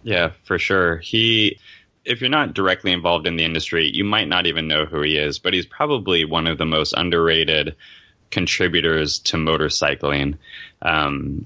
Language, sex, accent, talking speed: English, male, American, 170 wpm